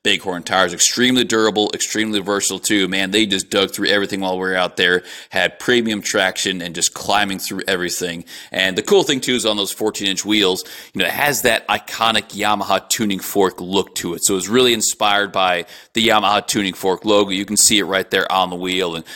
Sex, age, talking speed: male, 30-49, 215 wpm